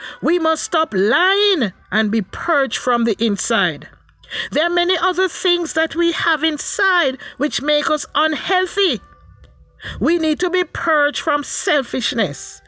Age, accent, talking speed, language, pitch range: 50-69, Nigerian, 140 wpm, English, 245-320 Hz